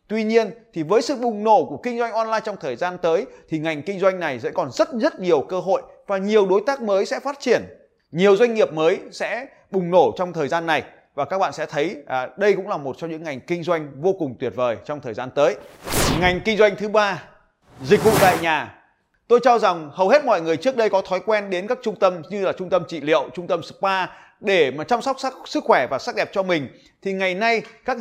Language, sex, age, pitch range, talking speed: Vietnamese, male, 20-39, 170-220 Hz, 255 wpm